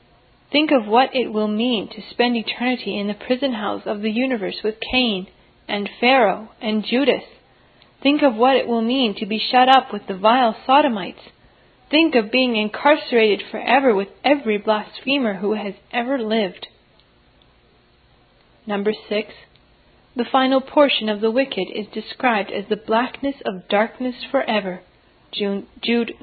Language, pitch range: English, 215-260 Hz